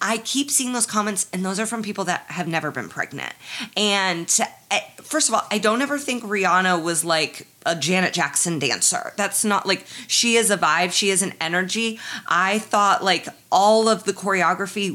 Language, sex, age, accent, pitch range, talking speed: English, female, 20-39, American, 180-235 Hz, 195 wpm